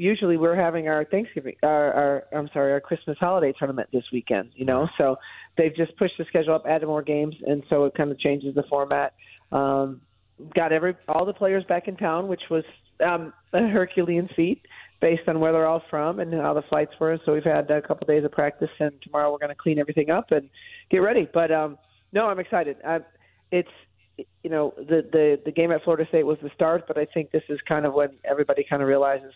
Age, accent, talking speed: 40-59, American, 230 wpm